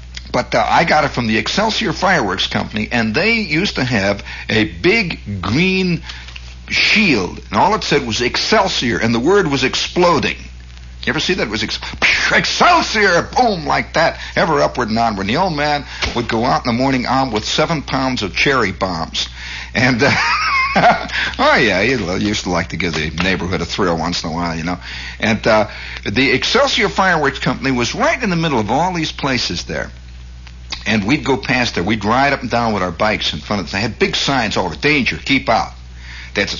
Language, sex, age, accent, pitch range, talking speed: English, male, 60-79, American, 80-135 Hz, 200 wpm